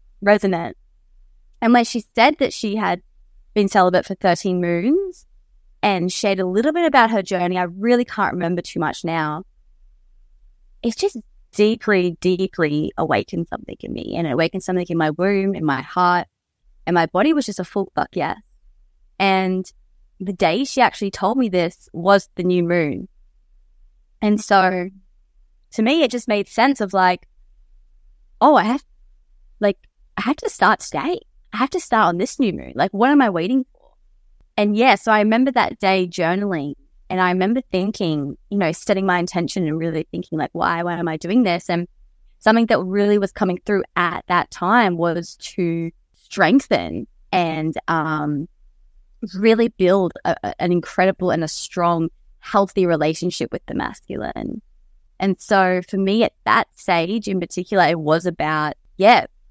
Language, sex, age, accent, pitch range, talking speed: English, female, 20-39, Australian, 170-210 Hz, 170 wpm